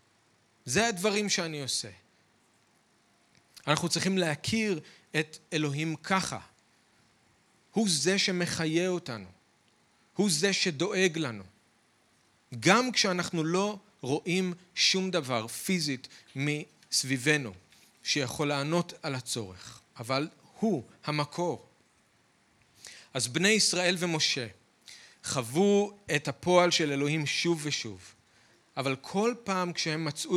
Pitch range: 135-180 Hz